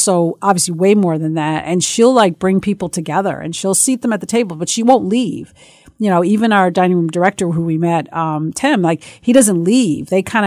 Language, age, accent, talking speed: English, 40-59, American, 235 wpm